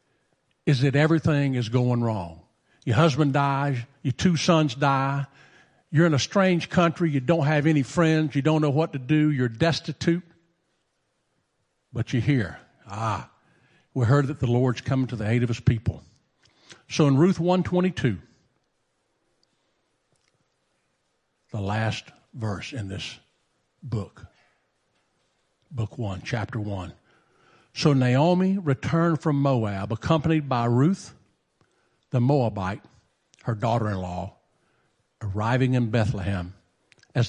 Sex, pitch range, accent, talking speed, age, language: male, 110-150 Hz, American, 130 wpm, 50-69, English